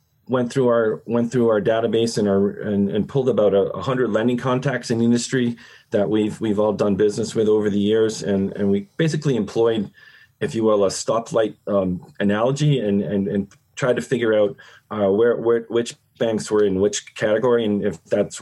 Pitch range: 100-115 Hz